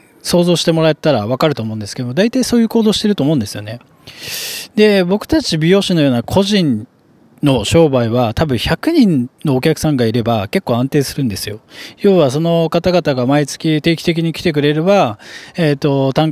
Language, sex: Japanese, male